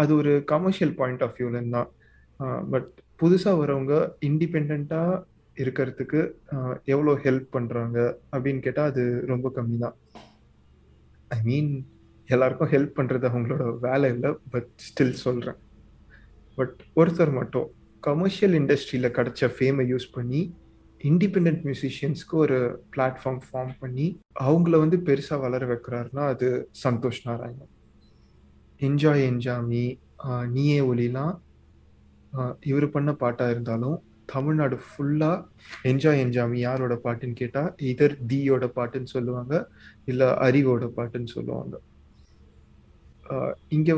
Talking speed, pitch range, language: 110 wpm, 120-145 Hz, Tamil